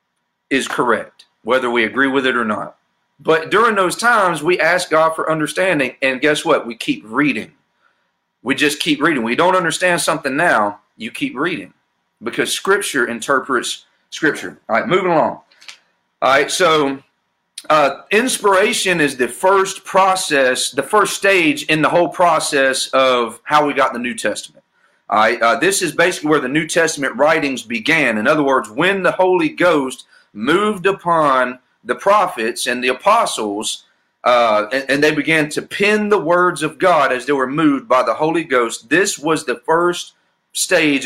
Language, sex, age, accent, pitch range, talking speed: English, male, 40-59, American, 125-185 Hz, 170 wpm